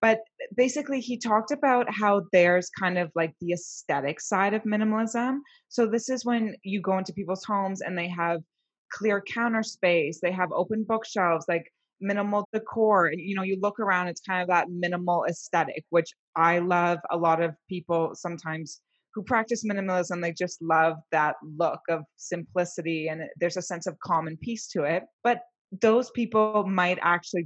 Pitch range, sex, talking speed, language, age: 170-210 Hz, female, 175 wpm, English, 20-39